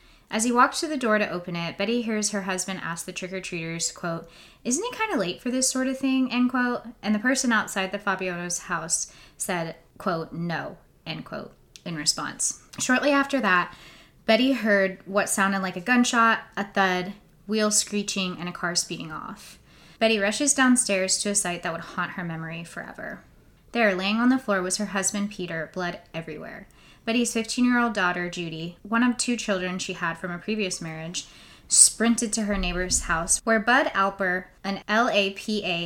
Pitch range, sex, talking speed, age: 175-220 Hz, female, 180 wpm, 20-39